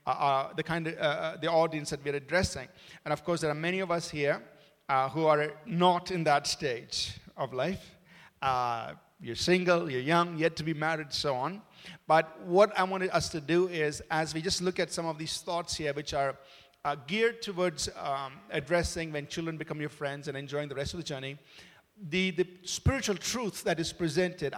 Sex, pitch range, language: male, 140-175 Hz, English